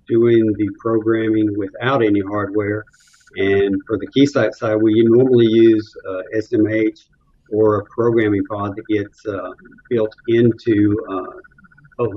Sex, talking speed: male, 135 wpm